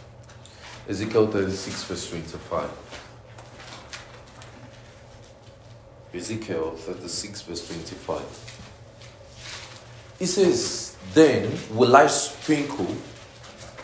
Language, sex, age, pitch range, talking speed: English, male, 40-59, 105-125 Hz, 60 wpm